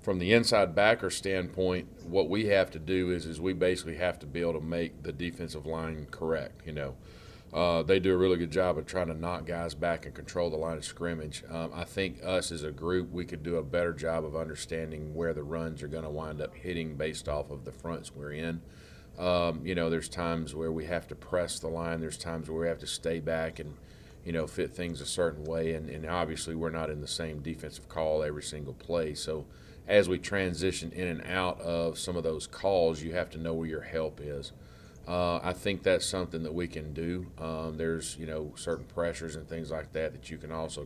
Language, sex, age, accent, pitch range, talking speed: English, male, 40-59, American, 75-85 Hz, 235 wpm